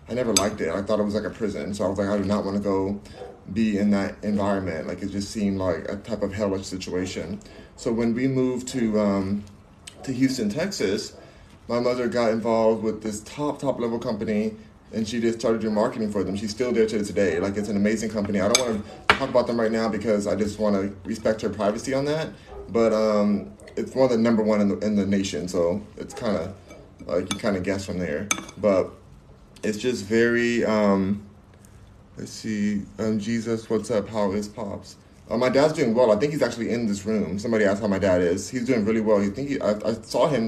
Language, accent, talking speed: English, American, 225 wpm